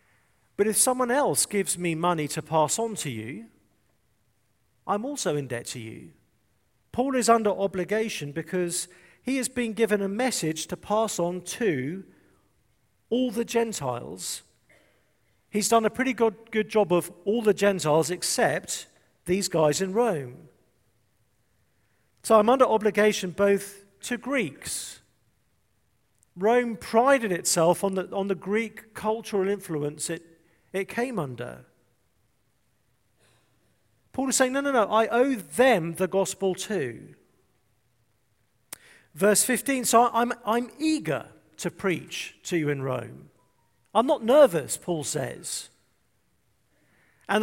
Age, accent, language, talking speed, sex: 50-69, British, English, 130 wpm, male